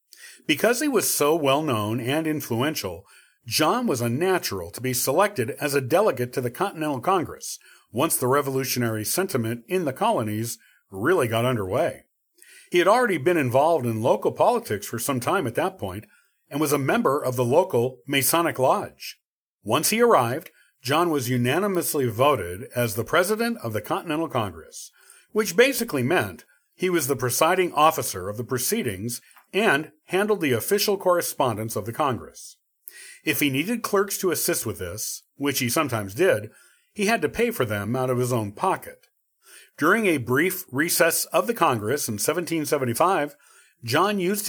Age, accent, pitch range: 50-69, American, 125-185 Hz